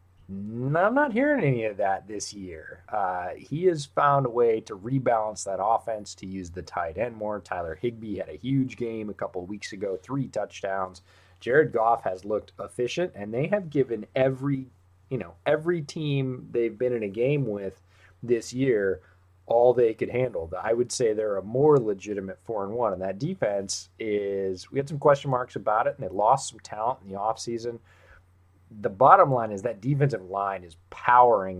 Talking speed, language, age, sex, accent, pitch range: 195 wpm, English, 30-49, male, American, 95-125 Hz